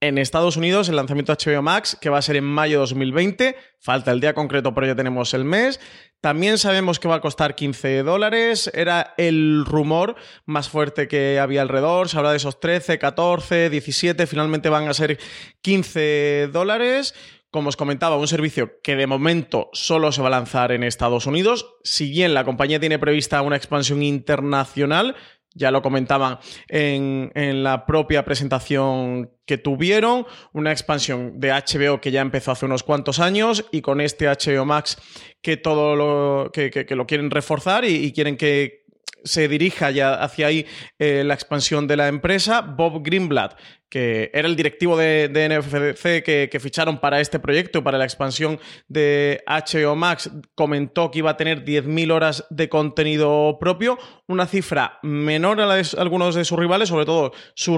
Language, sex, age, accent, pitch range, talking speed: Spanish, male, 30-49, Spanish, 140-165 Hz, 180 wpm